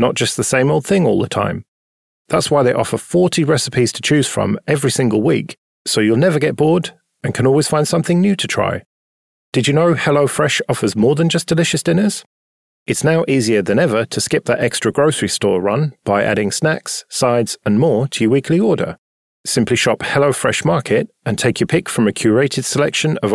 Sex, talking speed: male, 205 wpm